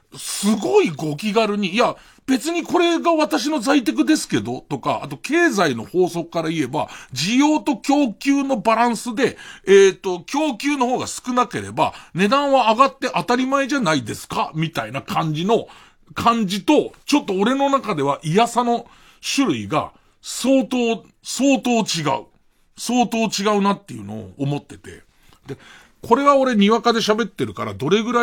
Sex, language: male, Japanese